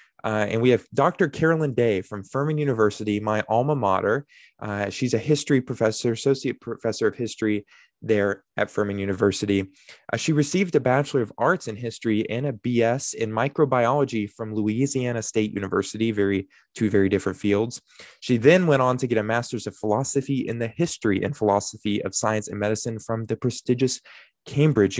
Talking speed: 175 wpm